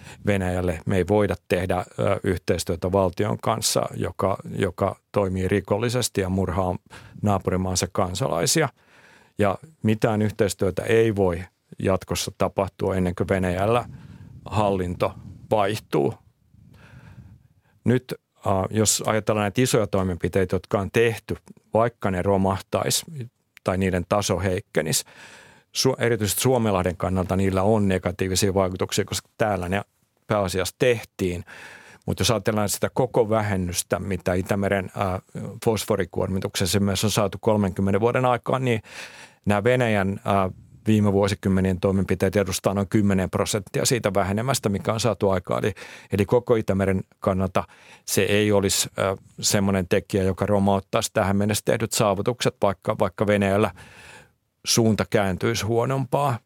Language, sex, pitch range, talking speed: Finnish, male, 95-110 Hz, 120 wpm